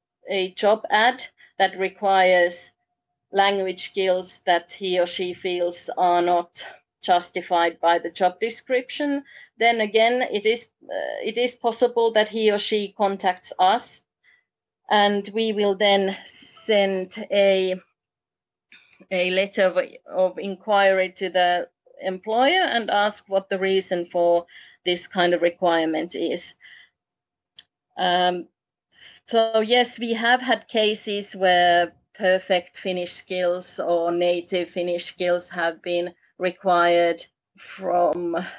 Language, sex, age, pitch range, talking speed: Finnish, female, 30-49, 175-215 Hz, 120 wpm